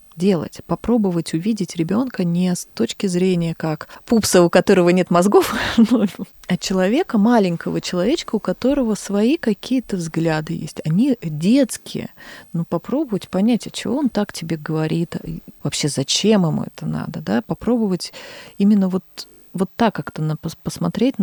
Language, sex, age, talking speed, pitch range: Russian, female, 30-49, 140 wpm, 165-210 Hz